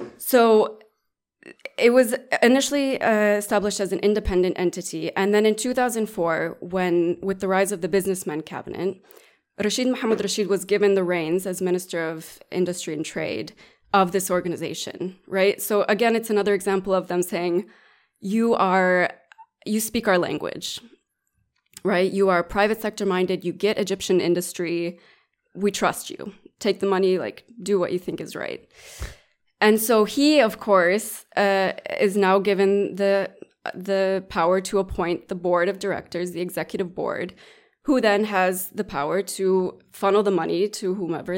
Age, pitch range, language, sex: 20-39, 180-215 Hz, Arabic, female